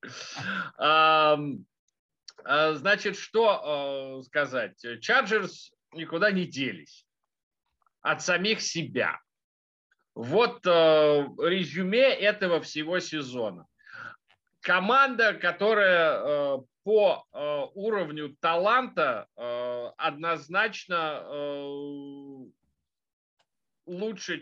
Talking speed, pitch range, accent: 55 wpm, 140-190 Hz, native